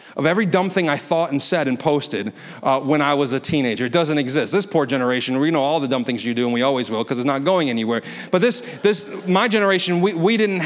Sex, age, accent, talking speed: male, 30-49, American, 265 wpm